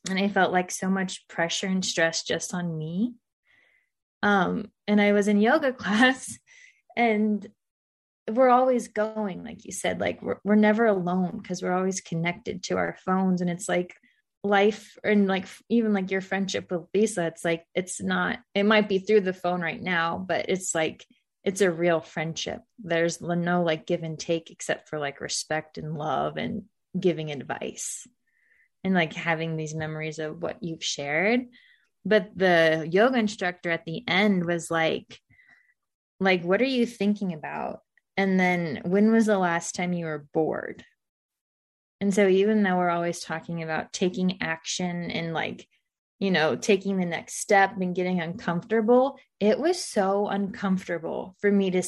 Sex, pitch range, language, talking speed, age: female, 170-210 Hz, English, 170 wpm, 20-39